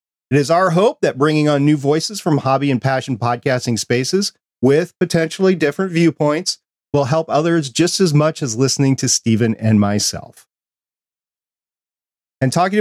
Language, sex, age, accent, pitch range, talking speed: English, male, 40-59, American, 125-170 Hz, 155 wpm